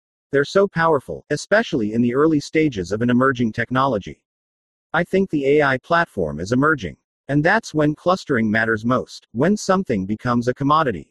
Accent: American